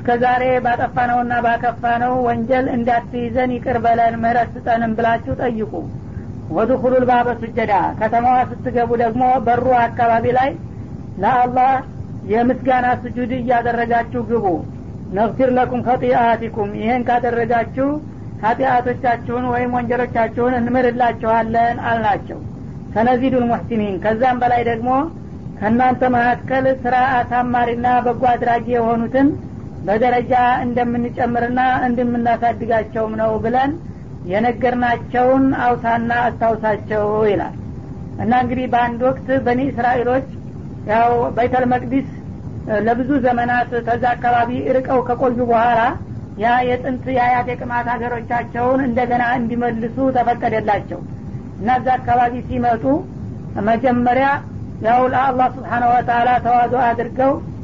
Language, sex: Amharic, female